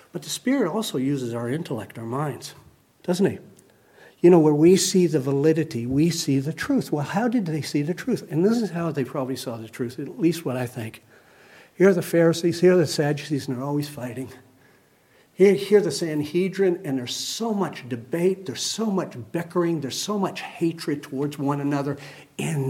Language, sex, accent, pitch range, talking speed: English, male, American, 140-200 Hz, 205 wpm